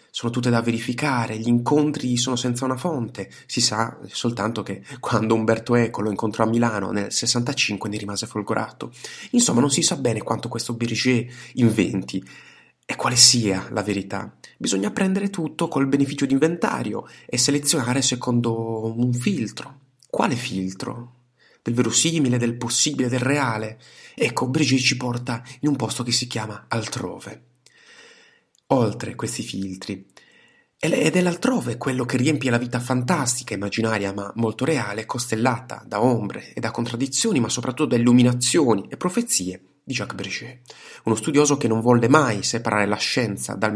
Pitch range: 110-130 Hz